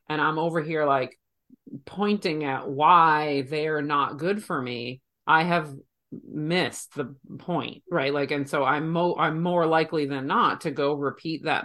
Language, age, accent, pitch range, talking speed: English, 30-49, American, 135-165 Hz, 170 wpm